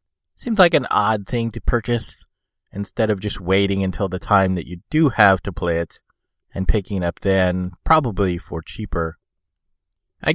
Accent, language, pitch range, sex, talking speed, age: American, English, 85-115 Hz, male, 175 wpm, 30-49